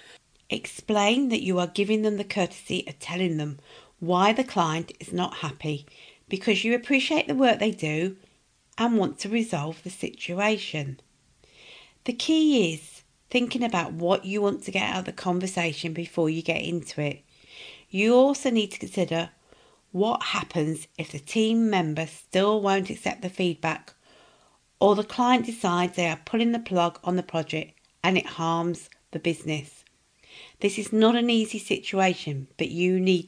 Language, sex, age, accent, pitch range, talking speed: English, female, 50-69, British, 165-220 Hz, 165 wpm